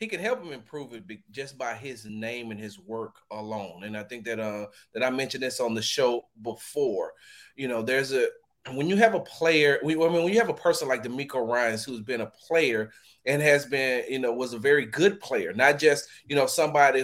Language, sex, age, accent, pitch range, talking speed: English, male, 30-49, American, 125-170 Hz, 245 wpm